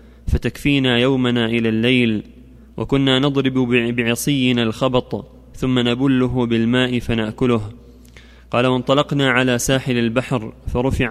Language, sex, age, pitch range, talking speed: Arabic, male, 20-39, 115-130 Hz, 95 wpm